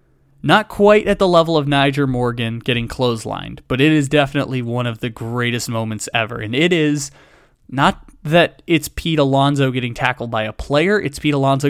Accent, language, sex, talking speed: American, English, male, 185 wpm